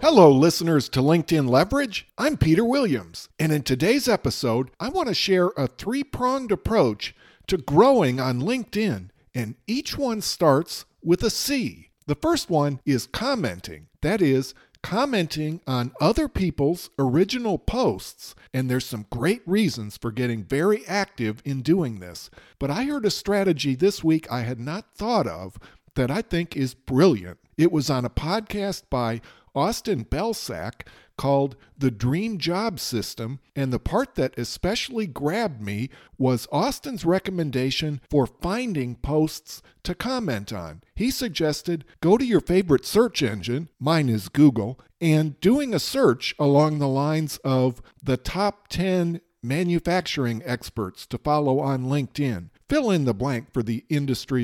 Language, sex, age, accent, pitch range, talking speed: English, male, 50-69, American, 125-190 Hz, 150 wpm